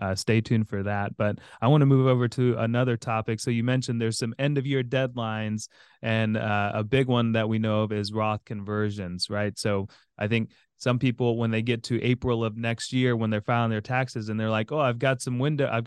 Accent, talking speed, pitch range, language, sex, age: American, 240 wpm, 110-125 Hz, English, male, 30-49